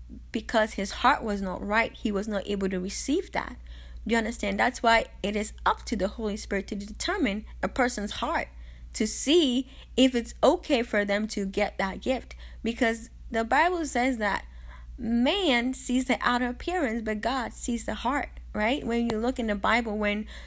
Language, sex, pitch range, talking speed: English, female, 200-245 Hz, 190 wpm